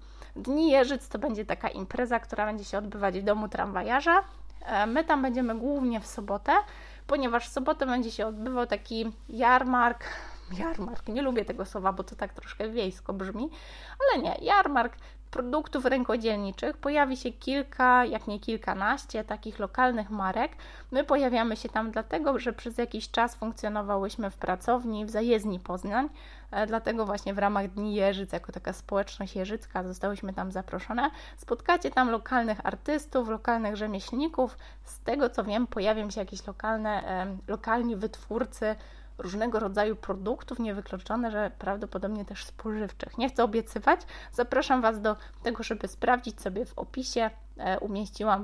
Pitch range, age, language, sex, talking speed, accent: 205-255 Hz, 20-39, Polish, female, 145 wpm, native